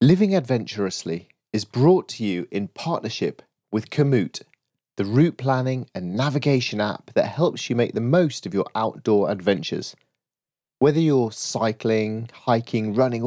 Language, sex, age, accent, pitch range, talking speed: English, male, 30-49, British, 105-145 Hz, 140 wpm